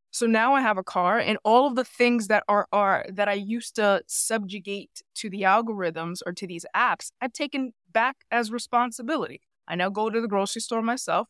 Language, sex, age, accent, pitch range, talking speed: English, female, 20-39, American, 185-230 Hz, 205 wpm